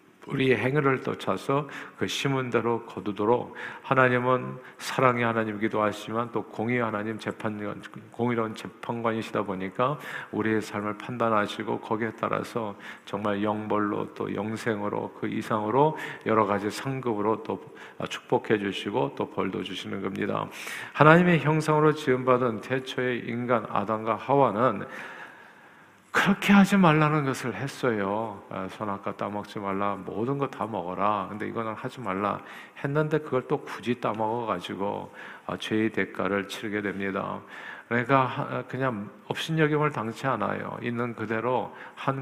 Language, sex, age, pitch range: Korean, male, 50-69, 105-130 Hz